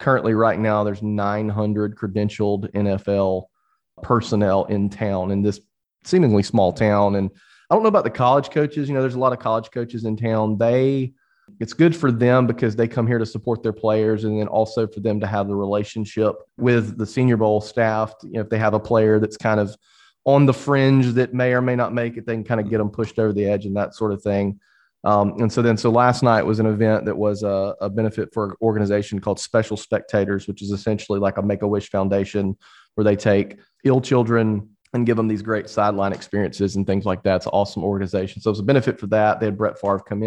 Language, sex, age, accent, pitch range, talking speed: English, male, 30-49, American, 100-115 Hz, 230 wpm